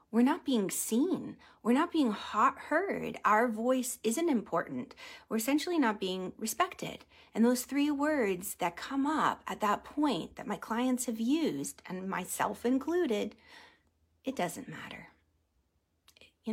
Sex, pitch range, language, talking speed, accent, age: female, 200-280 Hz, English, 140 wpm, American, 30-49